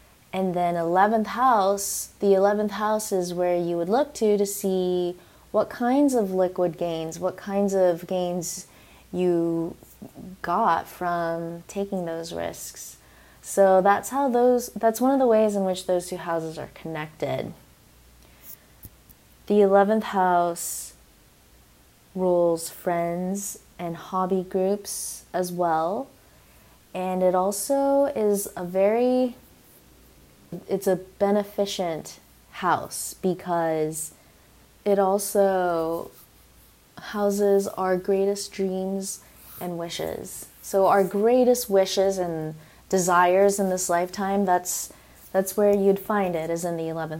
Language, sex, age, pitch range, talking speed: English, female, 20-39, 170-200 Hz, 120 wpm